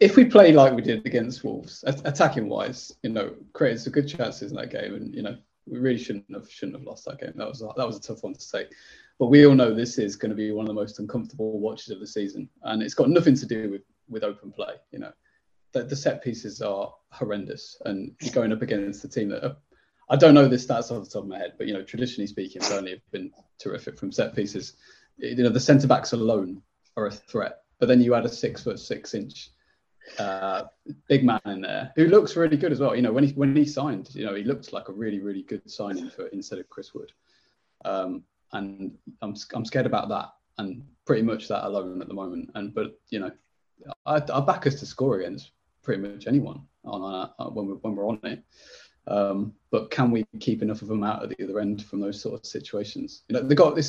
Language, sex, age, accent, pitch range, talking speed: English, male, 20-39, British, 105-140 Hz, 240 wpm